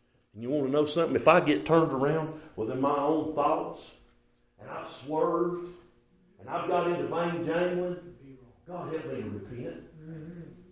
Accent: American